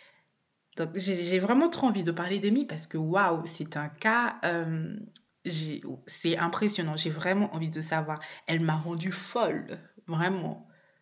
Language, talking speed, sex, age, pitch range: French, 150 wpm, female, 20-39, 160-190 Hz